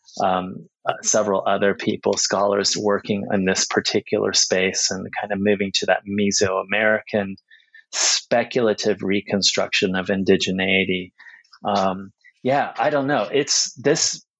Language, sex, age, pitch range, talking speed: English, male, 30-49, 105-125 Hz, 120 wpm